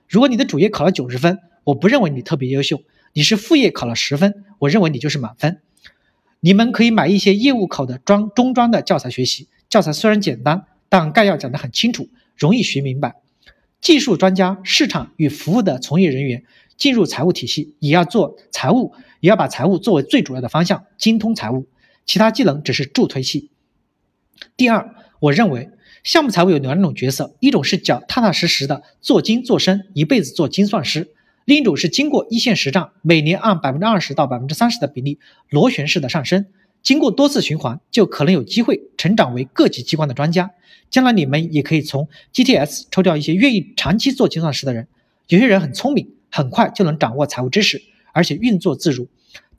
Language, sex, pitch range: Chinese, male, 145-220 Hz